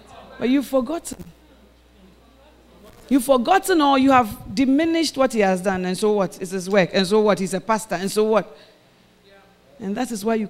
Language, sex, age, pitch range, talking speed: English, female, 40-59, 190-300 Hz, 190 wpm